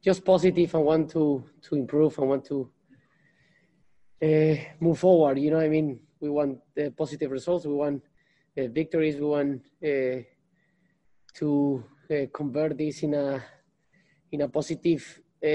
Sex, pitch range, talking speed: male, 135-155 Hz, 150 wpm